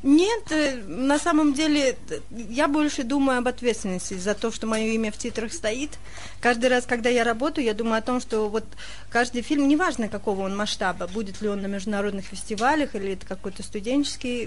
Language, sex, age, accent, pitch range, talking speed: Russian, female, 30-49, native, 205-245 Hz, 185 wpm